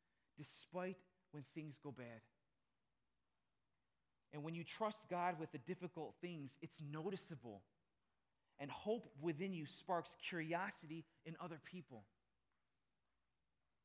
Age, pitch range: 30-49, 120-165 Hz